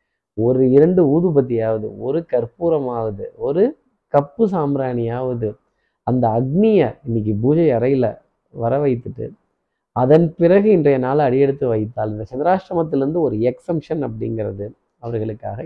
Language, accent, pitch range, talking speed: Tamil, native, 125-175 Hz, 95 wpm